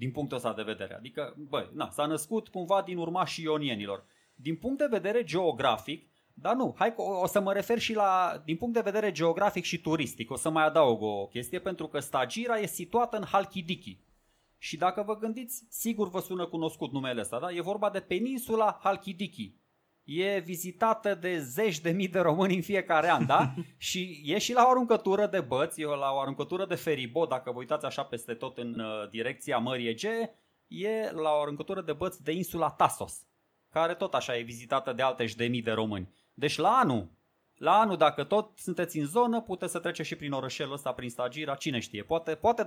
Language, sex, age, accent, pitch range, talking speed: Romanian, male, 30-49, native, 140-195 Hz, 200 wpm